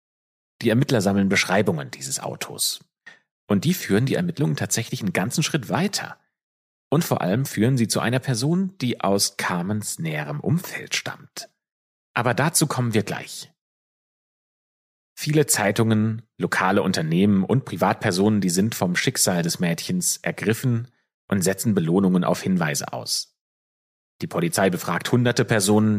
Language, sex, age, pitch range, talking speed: German, male, 30-49, 100-140 Hz, 135 wpm